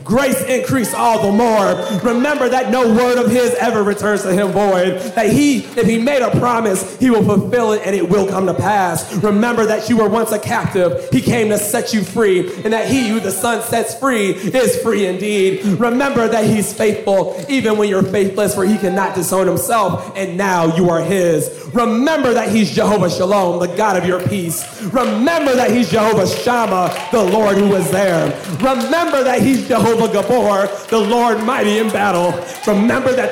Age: 30-49